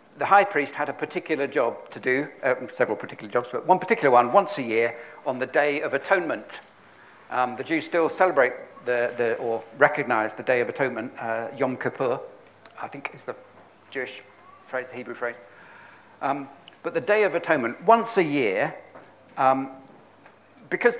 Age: 50-69